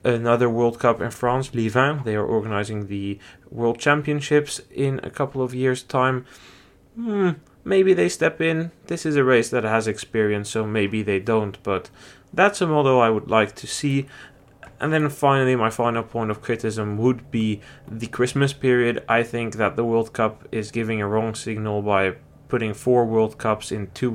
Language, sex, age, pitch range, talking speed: English, male, 20-39, 105-135 Hz, 180 wpm